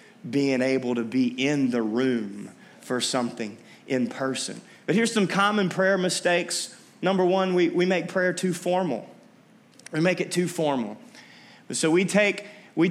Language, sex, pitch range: English, male, 130-195 Hz